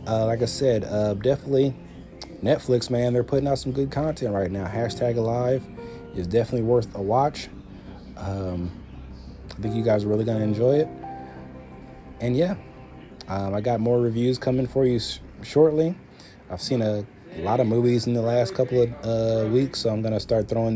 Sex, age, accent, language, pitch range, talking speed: male, 30-49, American, English, 90-115 Hz, 190 wpm